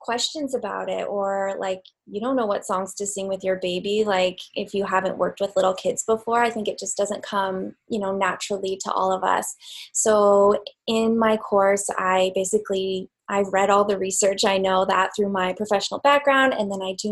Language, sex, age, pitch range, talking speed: English, female, 20-39, 190-220 Hz, 205 wpm